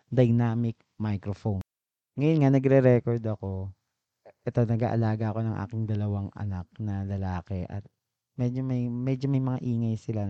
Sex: male